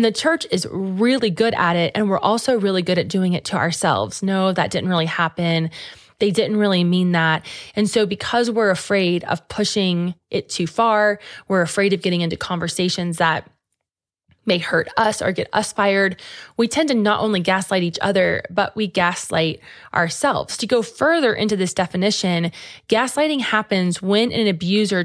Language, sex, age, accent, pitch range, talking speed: English, female, 20-39, American, 175-215 Hz, 175 wpm